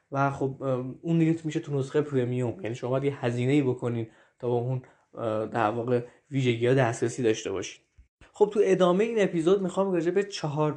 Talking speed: 180 wpm